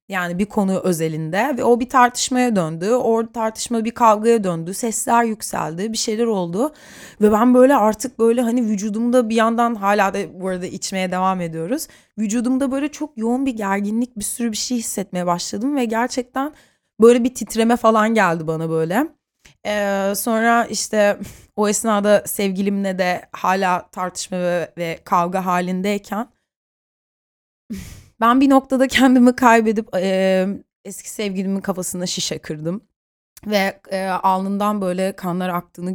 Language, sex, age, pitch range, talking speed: Turkish, female, 20-39, 185-235 Hz, 140 wpm